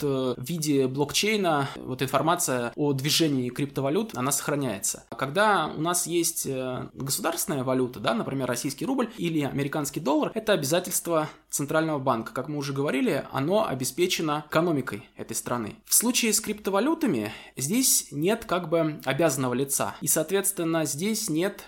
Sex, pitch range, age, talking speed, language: male, 135-185 Hz, 20-39, 140 wpm, Russian